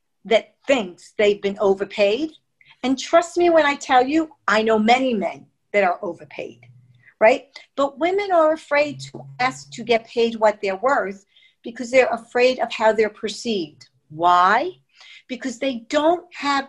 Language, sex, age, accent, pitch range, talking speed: English, female, 50-69, American, 200-280 Hz, 160 wpm